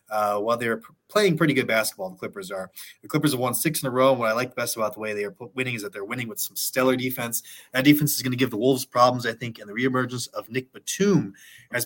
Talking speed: 285 wpm